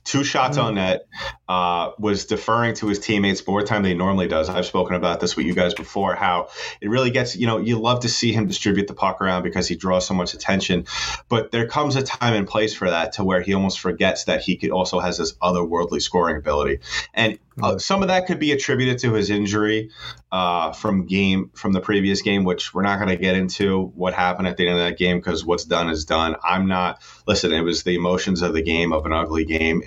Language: English